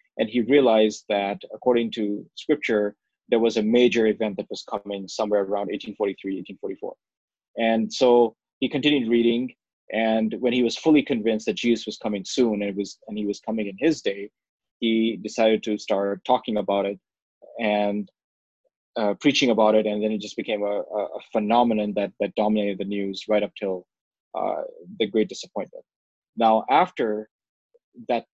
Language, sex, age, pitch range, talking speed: English, male, 20-39, 105-120 Hz, 170 wpm